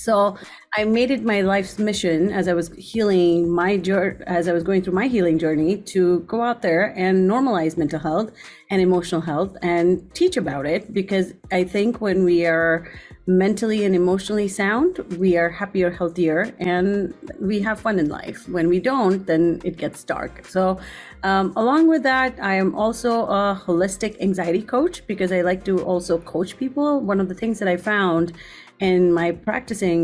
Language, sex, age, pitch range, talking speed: English, female, 30-49, 170-200 Hz, 180 wpm